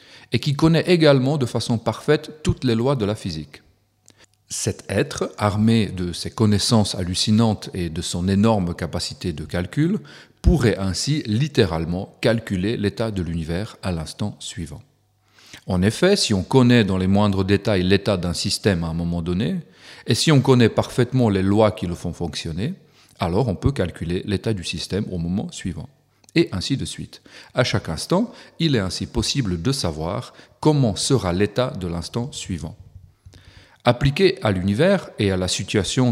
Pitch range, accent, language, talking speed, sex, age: 95-125 Hz, French, French, 165 wpm, male, 40-59